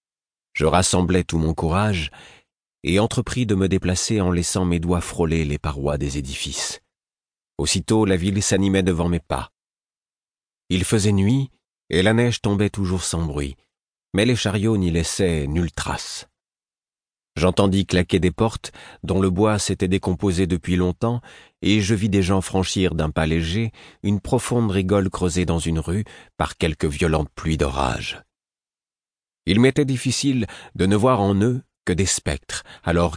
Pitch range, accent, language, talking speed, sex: 85-105 Hz, French, French, 155 wpm, male